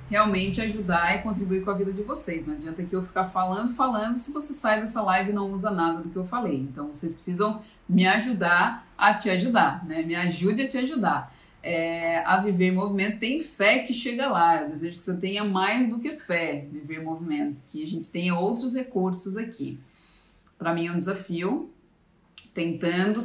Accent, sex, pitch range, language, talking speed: Brazilian, female, 165-210 Hz, Portuguese, 205 wpm